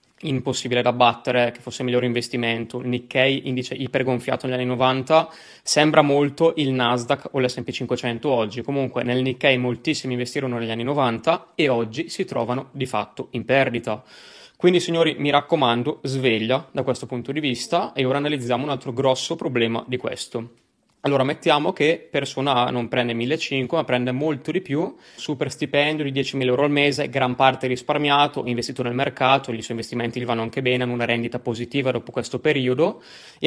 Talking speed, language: 180 wpm, Italian